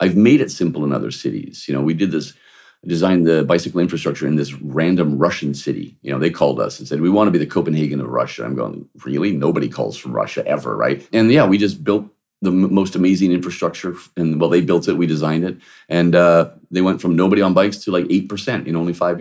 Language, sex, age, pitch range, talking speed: English, male, 40-59, 75-95 Hz, 240 wpm